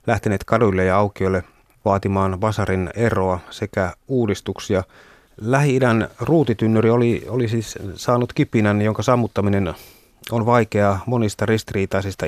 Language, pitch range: Finnish, 100-120 Hz